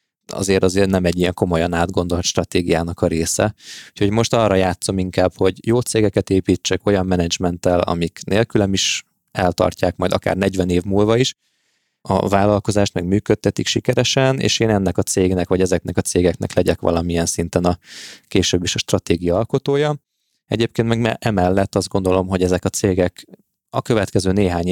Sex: male